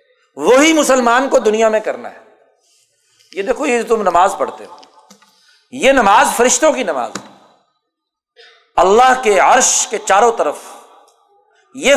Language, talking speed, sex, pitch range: Urdu, 130 wpm, male, 210-300 Hz